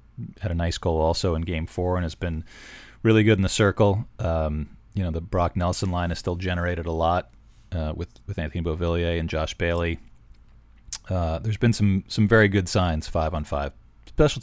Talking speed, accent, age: 200 wpm, American, 30-49